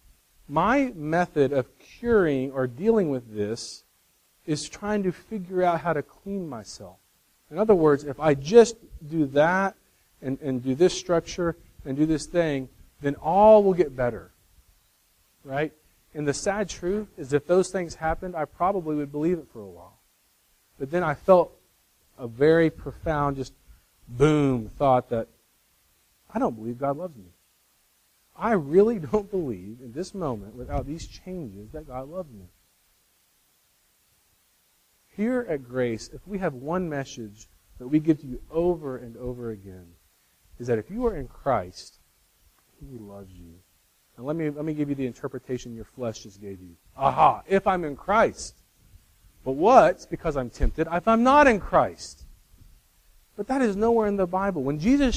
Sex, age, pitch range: male, 40-59, 115-180 Hz